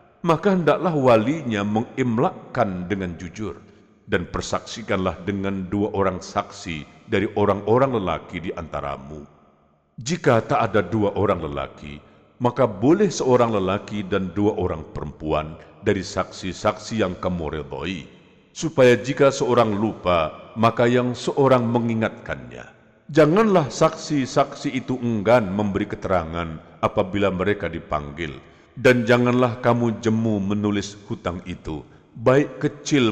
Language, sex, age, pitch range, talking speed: Indonesian, male, 50-69, 90-120 Hz, 110 wpm